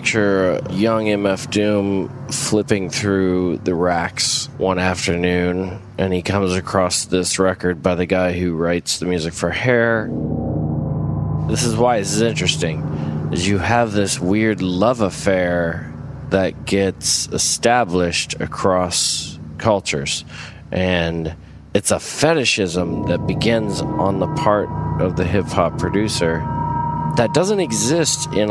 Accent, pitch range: American, 90-125 Hz